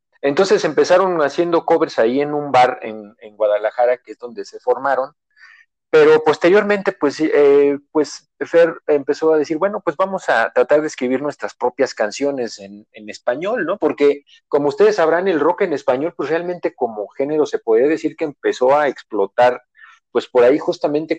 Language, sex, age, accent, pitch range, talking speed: Spanish, male, 40-59, Mexican, 130-180 Hz, 175 wpm